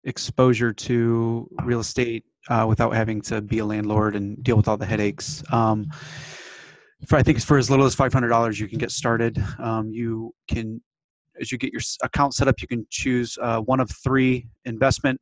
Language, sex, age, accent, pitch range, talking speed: English, male, 20-39, American, 115-130 Hz, 190 wpm